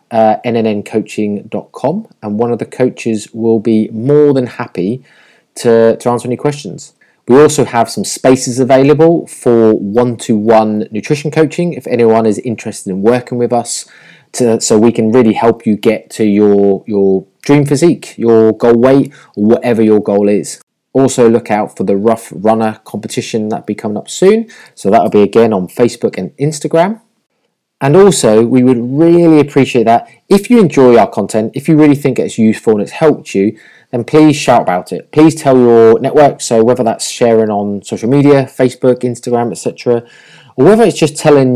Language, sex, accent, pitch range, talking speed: English, male, British, 110-135 Hz, 180 wpm